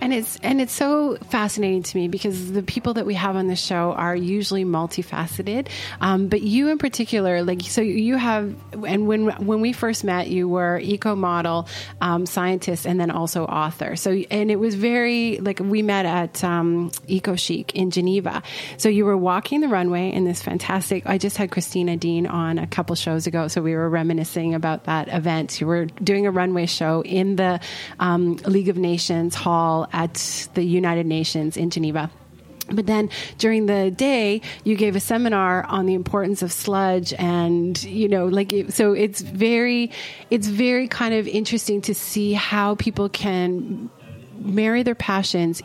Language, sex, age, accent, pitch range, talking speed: English, female, 30-49, American, 170-210 Hz, 180 wpm